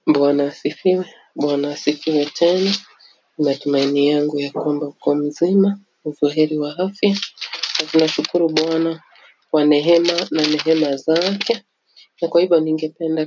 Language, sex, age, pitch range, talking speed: English, female, 30-49, 150-180 Hz, 110 wpm